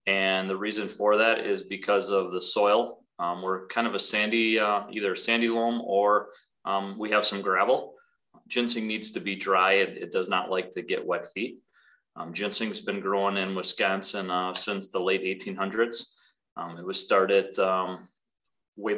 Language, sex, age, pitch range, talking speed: English, male, 30-49, 95-110 Hz, 180 wpm